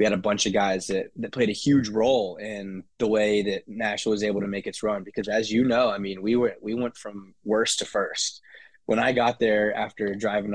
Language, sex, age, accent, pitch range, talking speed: English, male, 20-39, American, 95-110 Hz, 245 wpm